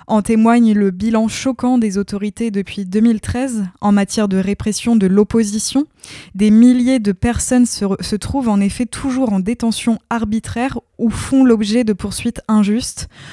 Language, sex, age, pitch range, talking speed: French, female, 20-39, 200-230 Hz, 155 wpm